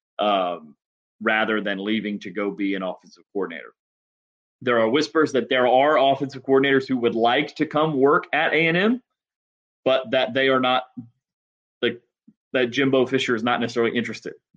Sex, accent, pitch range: male, American, 100-125 Hz